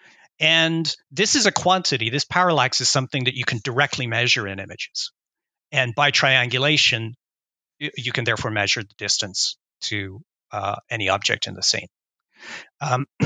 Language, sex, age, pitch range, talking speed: English, male, 40-59, 110-145 Hz, 150 wpm